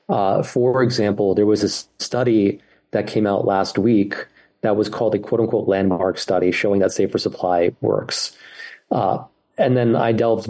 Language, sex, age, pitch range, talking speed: English, male, 30-49, 95-110 Hz, 165 wpm